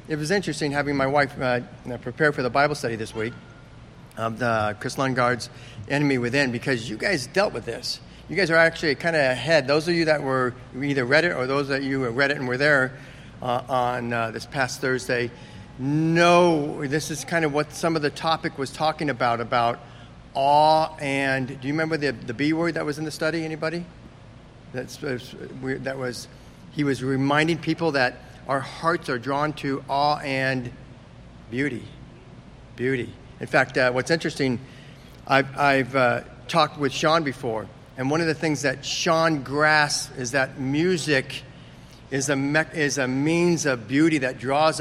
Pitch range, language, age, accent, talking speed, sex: 125-155 Hz, English, 50-69, American, 185 wpm, male